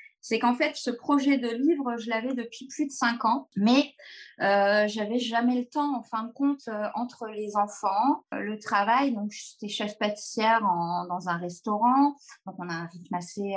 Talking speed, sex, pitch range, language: 185 wpm, female, 210-275 Hz, French